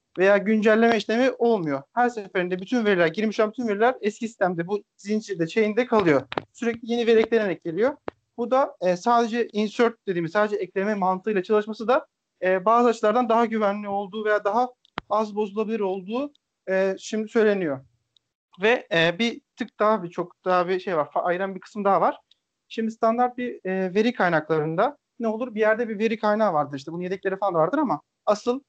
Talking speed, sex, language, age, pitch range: 180 wpm, male, Turkish, 40-59, 185-230 Hz